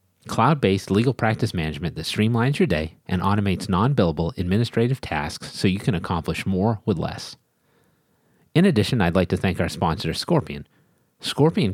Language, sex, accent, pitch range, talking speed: English, male, American, 85-115 Hz, 155 wpm